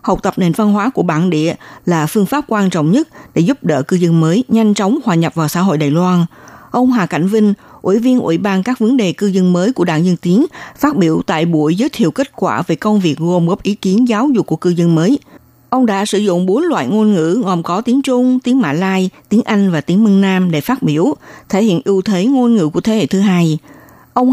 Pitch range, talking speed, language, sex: 175-230 Hz, 255 wpm, Vietnamese, female